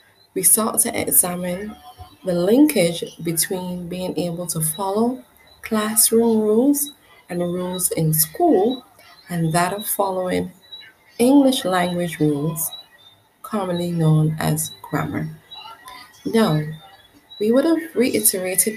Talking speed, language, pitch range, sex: 110 wpm, English, 160-215 Hz, female